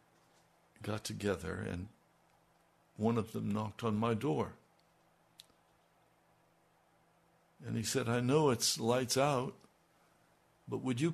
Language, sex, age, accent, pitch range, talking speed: English, male, 60-79, American, 115-165 Hz, 115 wpm